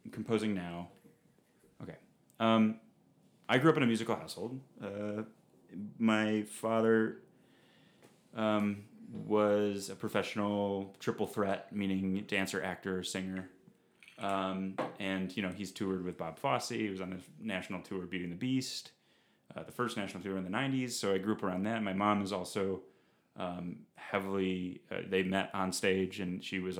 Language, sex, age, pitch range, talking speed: English, male, 30-49, 95-110 Hz, 155 wpm